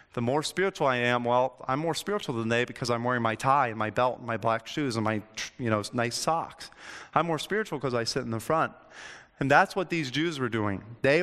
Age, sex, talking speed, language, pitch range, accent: 30-49, male, 245 wpm, English, 120-160 Hz, American